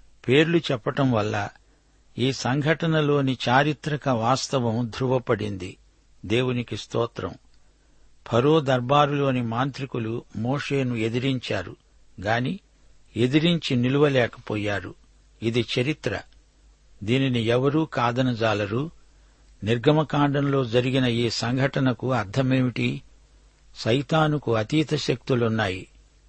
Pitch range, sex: 115-140 Hz, male